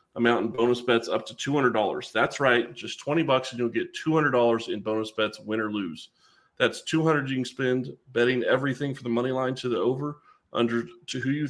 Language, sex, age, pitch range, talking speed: English, male, 30-49, 120-145 Hz, 210 wpm